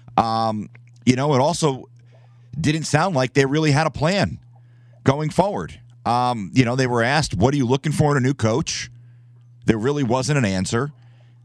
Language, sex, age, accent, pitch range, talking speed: English, male, 40-59, American, 115-135 Hz, 185 wpm